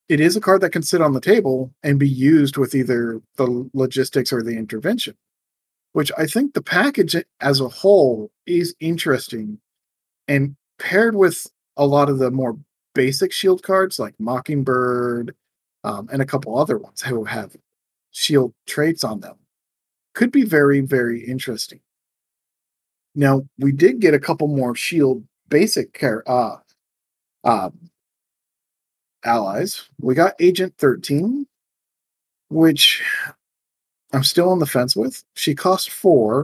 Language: English